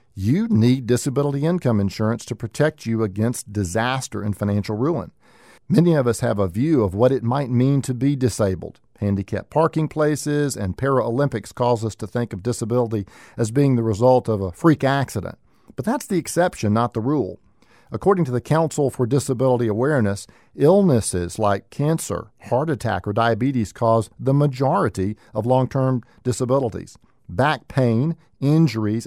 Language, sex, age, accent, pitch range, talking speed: English, male, 50-69, American, 110-140 Hz, 155 wpm